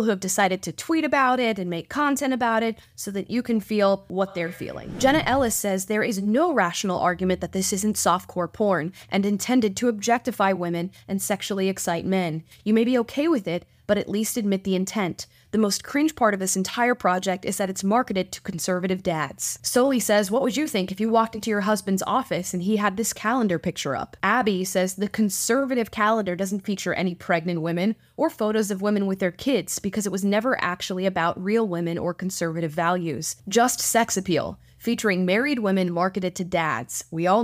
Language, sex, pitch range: English, female, 185-225 Hz